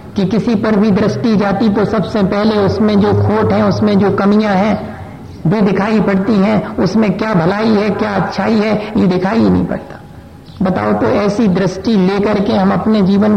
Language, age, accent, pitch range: Hindi, 50-69, native, 185-215 Hz